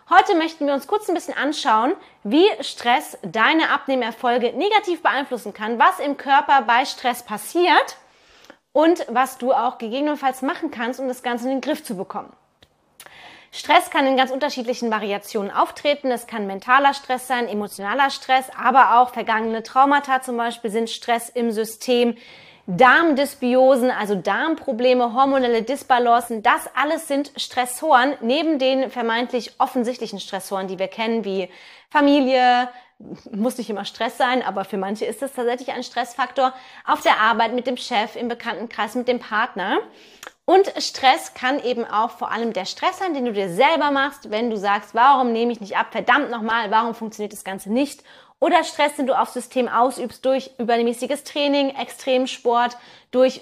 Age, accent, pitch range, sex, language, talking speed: 20-39, German, 225-275 Hz, female, German, 165 wpm